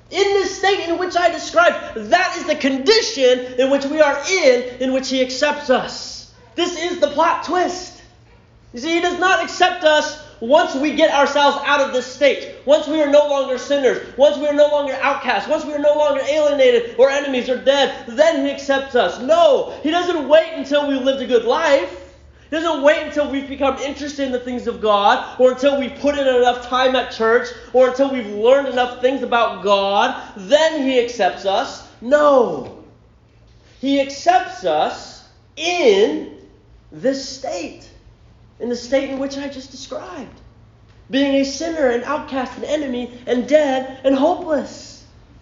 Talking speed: 175 wpm